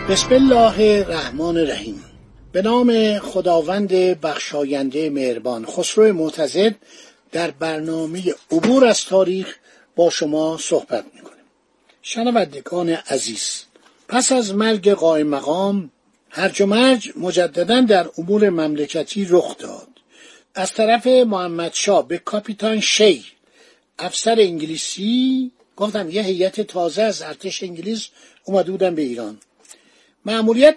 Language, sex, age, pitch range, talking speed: Persian, male, 50-69, 175-230 Hz, 105 wpm